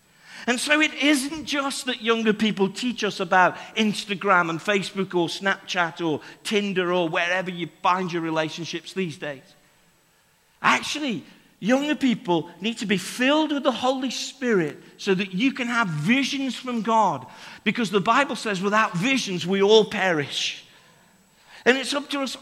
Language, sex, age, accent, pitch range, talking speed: English, male, 50-69, British, 180-245 Hz, 160 wpm